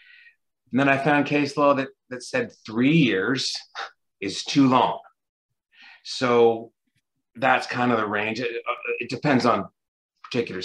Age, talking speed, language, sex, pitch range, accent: 40-59, 145 wpm, English, male, 105-135 Hz, American